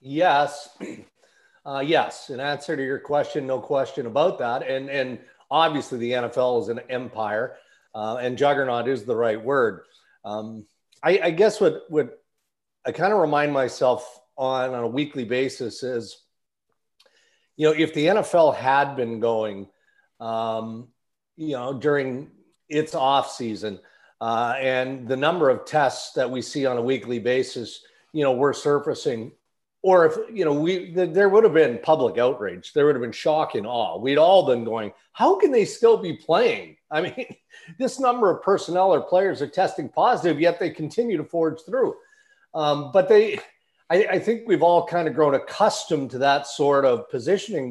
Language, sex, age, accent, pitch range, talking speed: English, male, 40-59, American, 125-170 Hz, 175 wpm